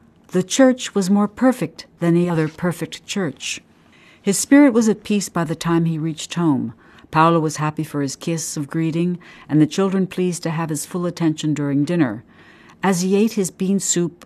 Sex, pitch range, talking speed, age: female, 150-185 Hz, 195 wpm, 60-79